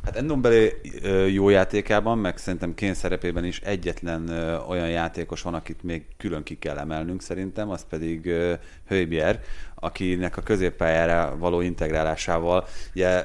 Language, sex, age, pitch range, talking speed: Hungarian, male, 30-49, 85-105 Hz, 130 wpm